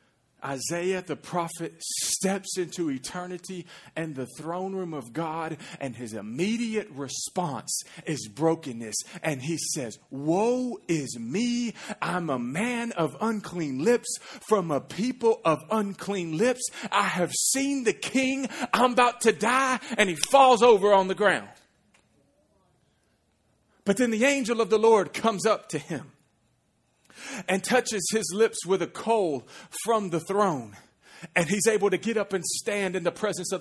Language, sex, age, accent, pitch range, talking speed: English, male, 40-59, American, 180-245 Hz, 150 wpm